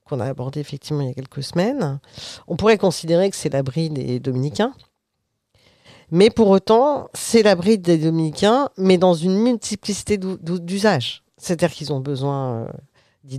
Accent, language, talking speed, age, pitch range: French, French, 150 wpm, 50-69, 145-200 Hz